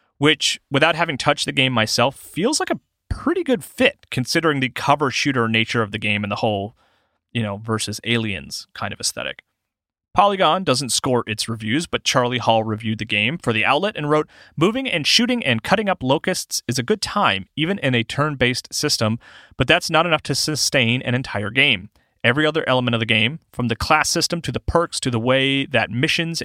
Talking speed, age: 205 wpm, 30-49